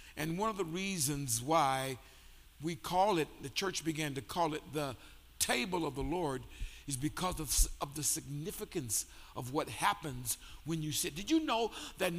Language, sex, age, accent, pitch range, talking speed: English, male, 60-79, American, 150-225 Hz, 175 wpm